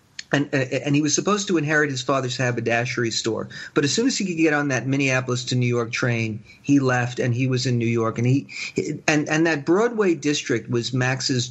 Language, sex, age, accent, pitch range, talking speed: English, male, 40-59, American, 130-165 Hz, 220 wpm